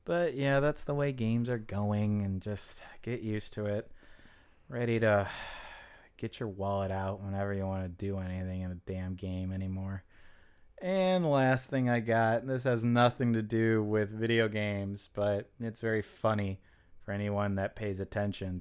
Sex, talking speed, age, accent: male, 175 wpm, 20-39, American